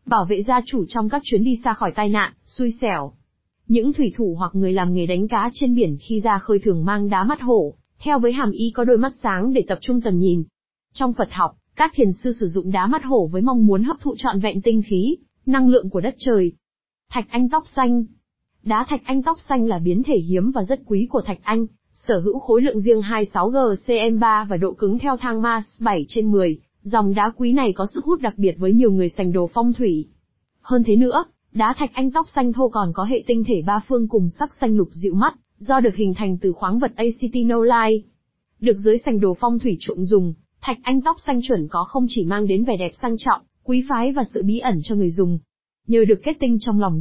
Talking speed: 240 wpm